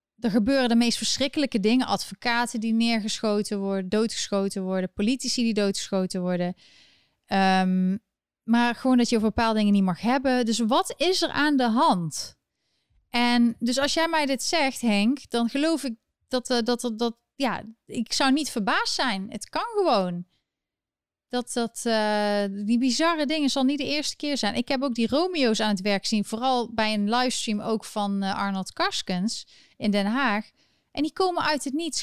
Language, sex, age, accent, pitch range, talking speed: Dutch, female, 30-49, Dutch, 210-270 Hz, 185 wpm